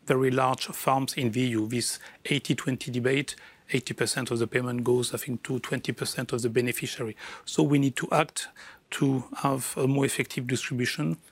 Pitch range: 125-140 Hz